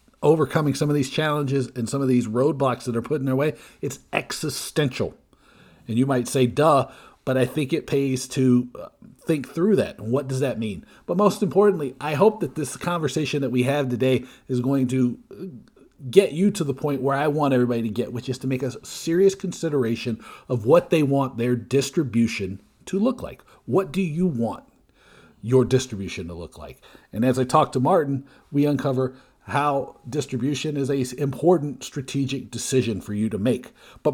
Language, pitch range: English, 120-145 Hz